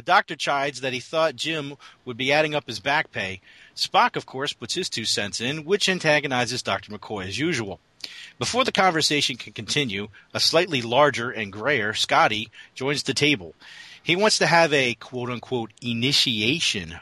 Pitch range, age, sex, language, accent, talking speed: 115-150 Hz, 40-59, male, English, American, 175 wpm